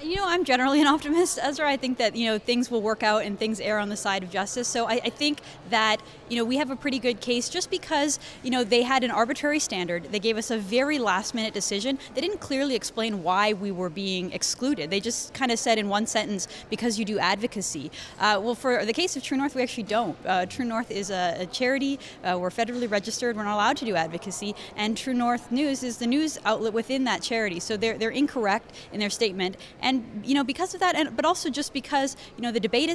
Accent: American